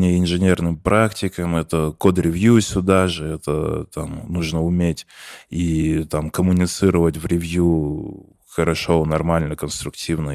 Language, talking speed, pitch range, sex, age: Russian, 105 wpm, 80-95 Hz, male, 20-39